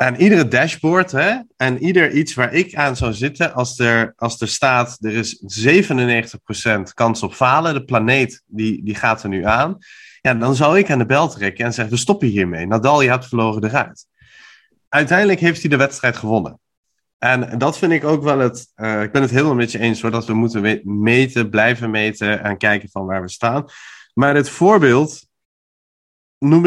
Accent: Dutch